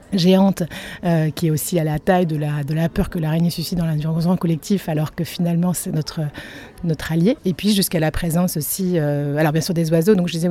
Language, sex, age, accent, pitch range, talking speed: French, female, 30-49, French, 150-180 Hz, 235 wpm